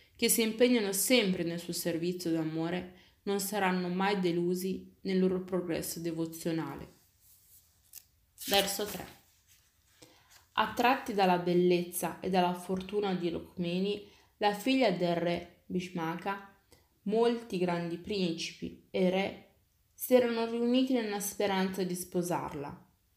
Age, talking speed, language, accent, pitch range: 20-39, 110 wpm, Italian, native, 165-205 Hz